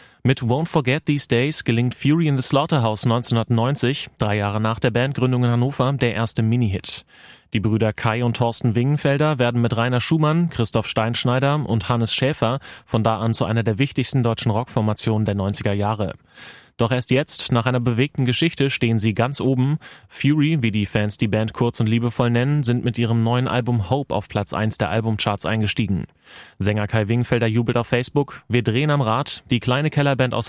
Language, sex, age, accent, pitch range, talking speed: German, male, 30-49, German, 110-130 Hz, 185 wpm